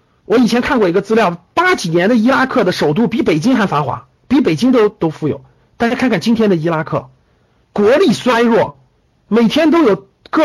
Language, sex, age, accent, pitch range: Chinese, male, 50-69, native, 190-265 Hz